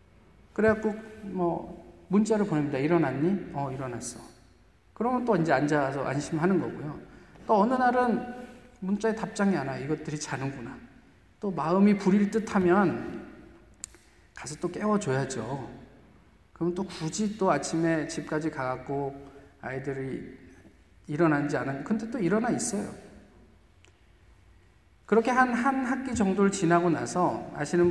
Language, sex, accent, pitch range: Korean, male, native, 135-195 Hz